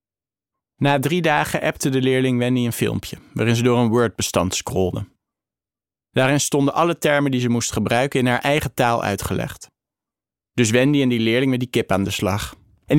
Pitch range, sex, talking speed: 115-145 Hz, male, 185 wpm